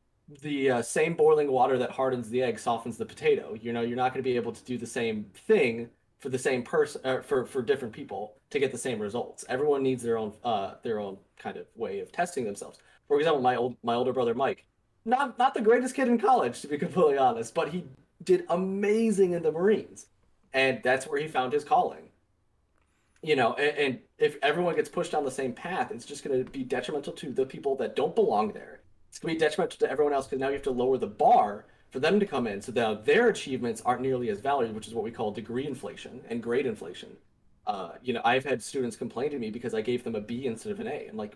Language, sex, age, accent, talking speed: English, male, 30-49, American, 245 wpm